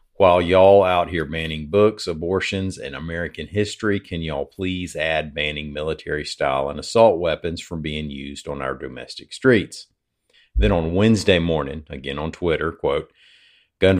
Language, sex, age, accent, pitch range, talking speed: English, male, 50-69, American, 75-90 Hz, 155 wpm